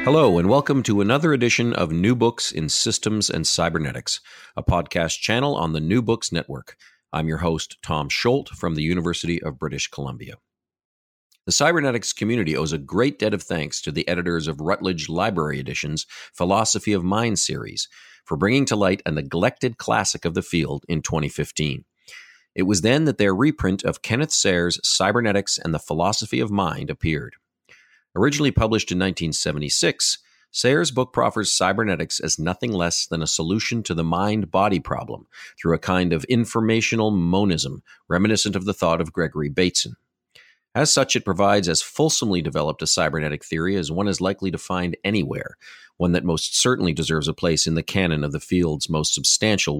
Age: 40-59